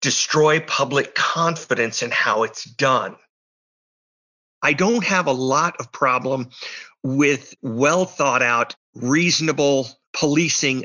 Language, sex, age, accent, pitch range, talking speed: English, male, 50-69, American, 125-155 Hz, 110 wpm